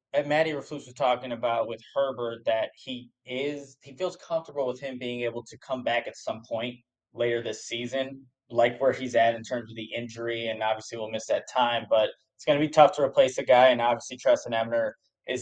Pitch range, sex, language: 120-150 Hz, male, English